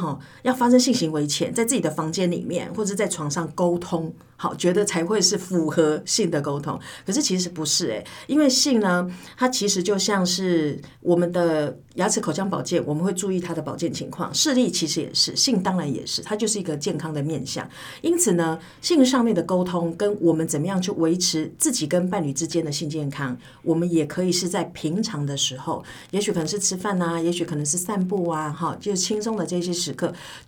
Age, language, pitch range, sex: 50-69, Chinese, 155-195 Hz, female